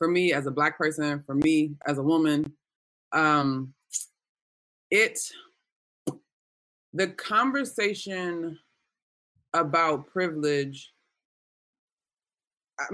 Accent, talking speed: American, 80 wpm